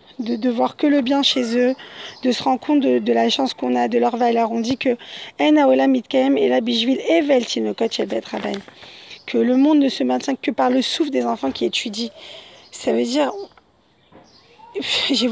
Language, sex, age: French, female, 20-39